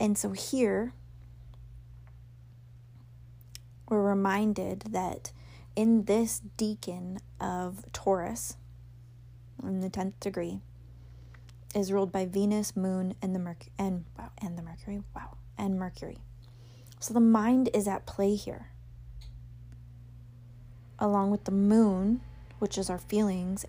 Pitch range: 120-200 Hz